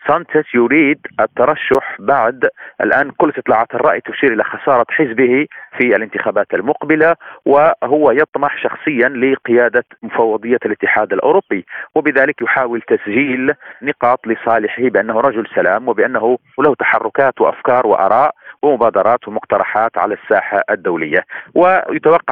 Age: 40-59